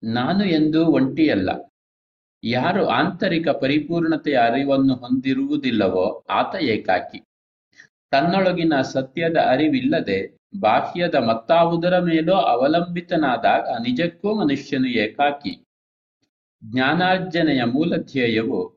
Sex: male